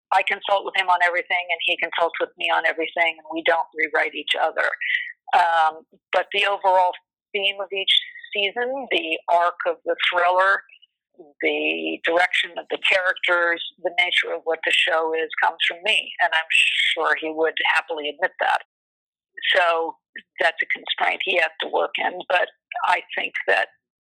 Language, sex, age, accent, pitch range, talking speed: English, female, 50-69, American, 160-195 Hz, 170 wpm